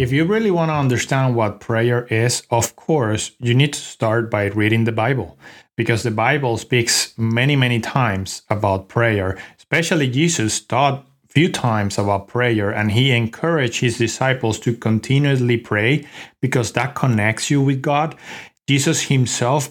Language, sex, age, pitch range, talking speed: English, male, 30-49, 115-140 Hz, 160 wpm